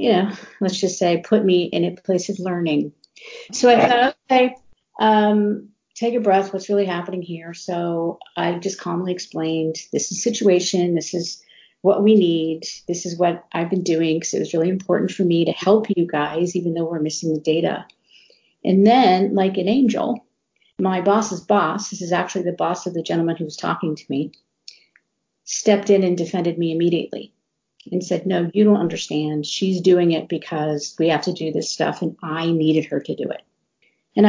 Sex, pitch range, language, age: female, 170-205 Hz, English, 50-69